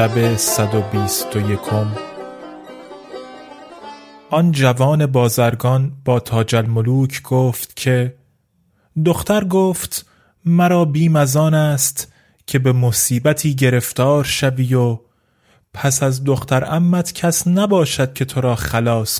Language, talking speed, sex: Persian, 95 wpm, male